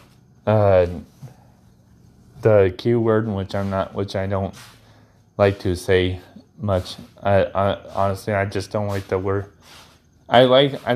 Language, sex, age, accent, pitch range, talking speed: English, male, 20-39, American, 95-120 Hz, 135 wpm